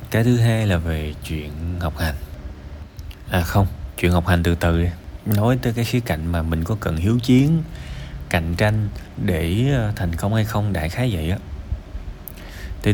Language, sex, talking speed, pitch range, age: Vietnamese, male, 180 wpm, 85-115 Hz, 20-39